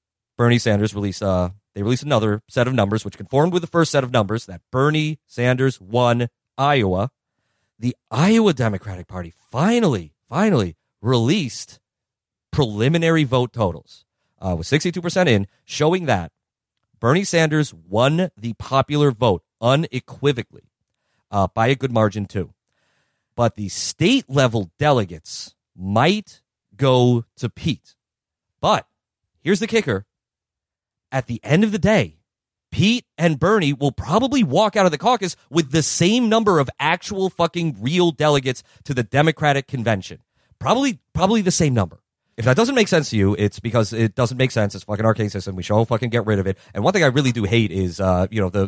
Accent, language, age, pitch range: American, English, 30-49, 100-150 Hz